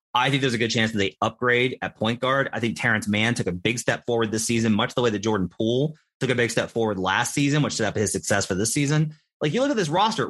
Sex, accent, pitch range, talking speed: male, American, 110-140 Hz, 290 wpm